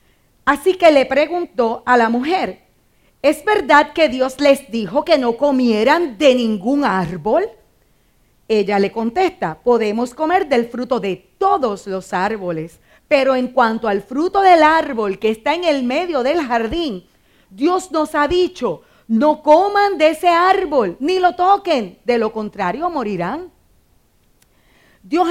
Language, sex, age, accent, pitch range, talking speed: Spanish, female, 40-59, American, 210-315 Hz, 145 wpm